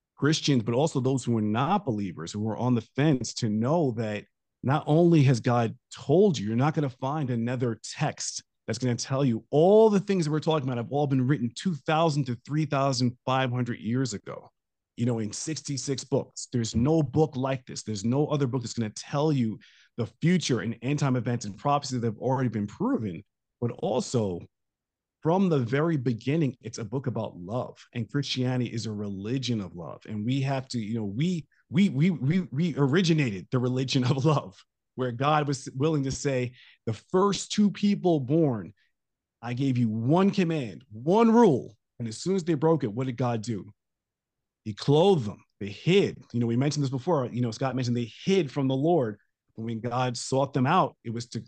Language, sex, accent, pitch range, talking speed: English, male, American, 115-150 Hz, 200 wpm